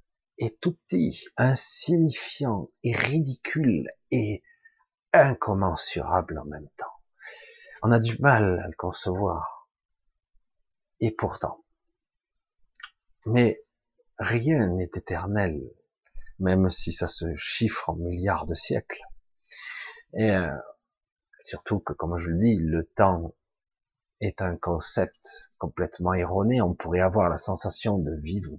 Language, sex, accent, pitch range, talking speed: French, male, French, 90-120 Hz, 115 wpm